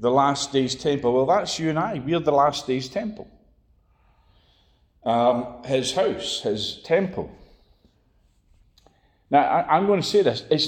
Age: 40-59